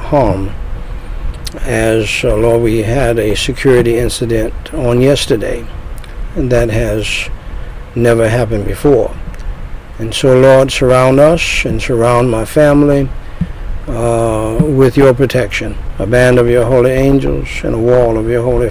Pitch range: 110-135 Hz